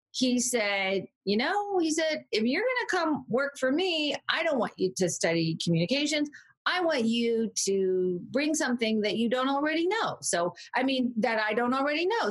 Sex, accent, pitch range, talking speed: female, American, 190-290 Hz, 195 wpm